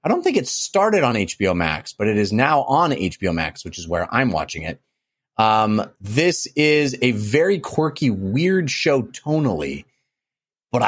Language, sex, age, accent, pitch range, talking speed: English, male, 30-49, American, 115-155 Hz, 170 wpm